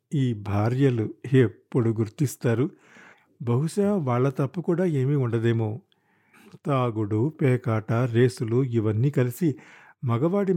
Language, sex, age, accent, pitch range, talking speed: Telugu, male, 50-69, native, 120-150 Hz, 90 wpm